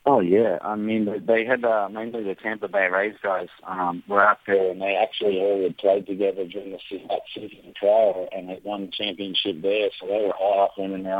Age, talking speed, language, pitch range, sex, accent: 30-49, 230 wpm, English, 95-105 Hz, male, American